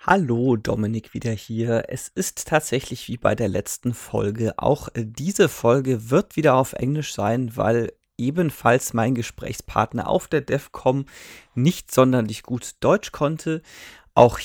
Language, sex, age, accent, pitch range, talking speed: German, male, 30-49, German, 115-145 Hz, 135 wpm